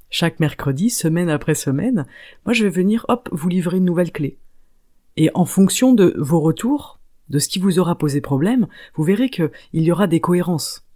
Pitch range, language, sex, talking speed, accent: 140-185 Hz, French, female, 190 wpm, French